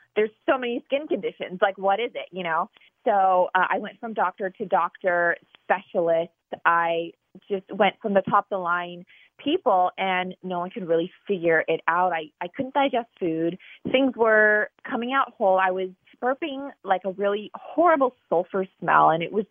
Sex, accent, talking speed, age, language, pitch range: female, American, 180 wpm, 20-39, English, 180-230 Hz